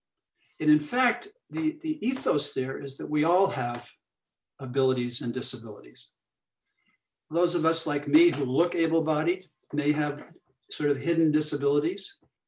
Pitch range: 130-155 Hz